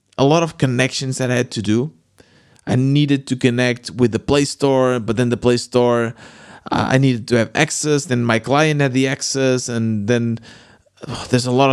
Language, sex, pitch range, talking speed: English, male, 115-140 Hz, 200 wpm